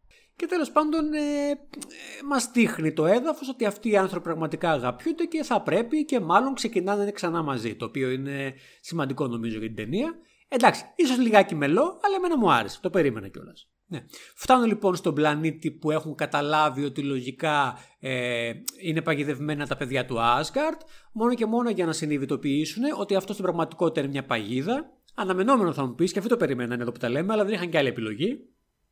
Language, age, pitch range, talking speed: Greek, 30-49, 145-235 Hz, 180 wpm